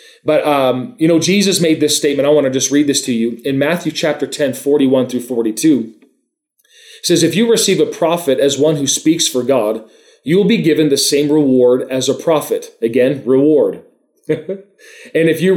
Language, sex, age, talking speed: English, male, 40-59, 195 wpm